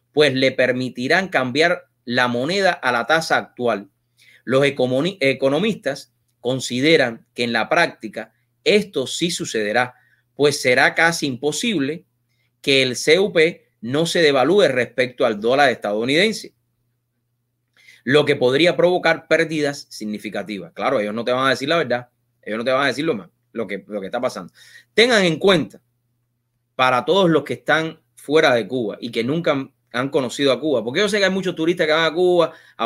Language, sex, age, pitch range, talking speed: English, male, 30-49, 120-155 Hz, 170 wpm